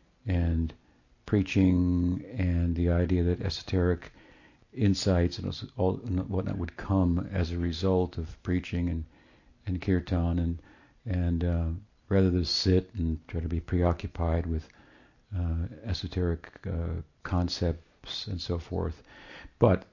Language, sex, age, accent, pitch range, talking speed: English, male, 60-79, American, 85-95 Hz, 125 wpm